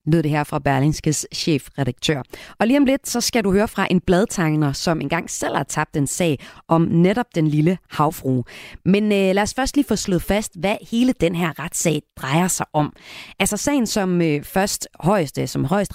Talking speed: 205 wpm